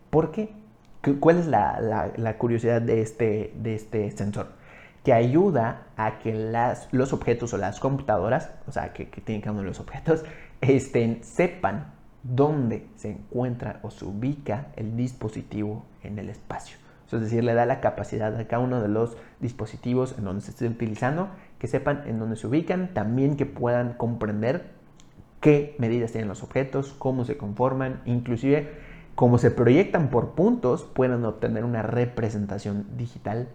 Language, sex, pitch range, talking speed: Spanish, male, 110-140 Hz, 165 wpm